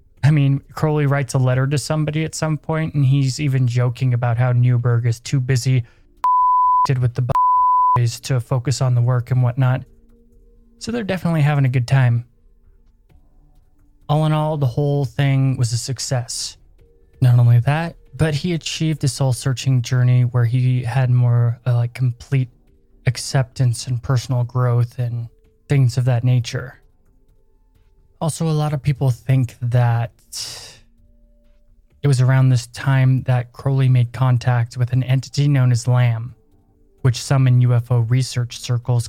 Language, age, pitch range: English, 20-39, 115-135 Hz